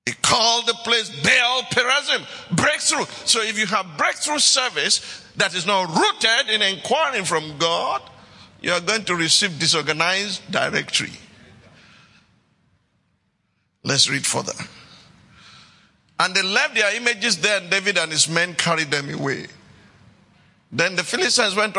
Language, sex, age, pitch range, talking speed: English, male, 50-69, 175-245 Hz, 135 wpm